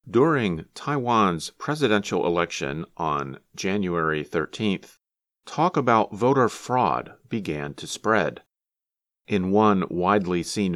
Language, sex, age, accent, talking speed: English, male, 40-59, American, 100 wpm